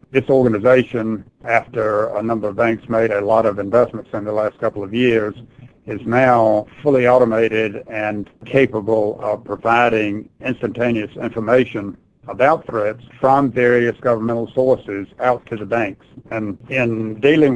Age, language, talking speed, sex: 60-79, English, 140 wpm, male